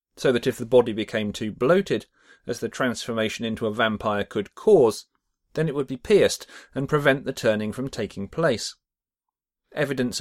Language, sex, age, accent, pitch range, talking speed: English, male, 40-59, British, 110-150 Hz, 170 wpm